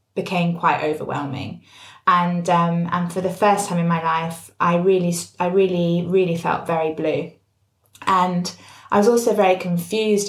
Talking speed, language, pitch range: 155 wpm, English, 165-190 Hz